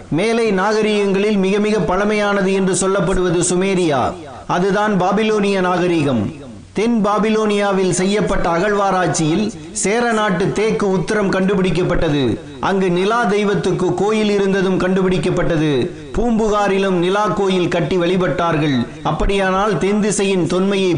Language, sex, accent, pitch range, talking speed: Tamil, male, native, 185-210 Hz, 85 wpm